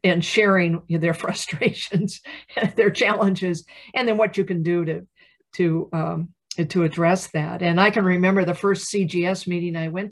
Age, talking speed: 50-69, 170 wpm